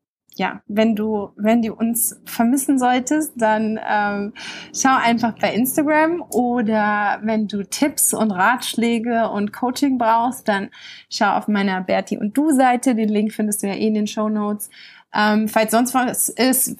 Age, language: 20-39, German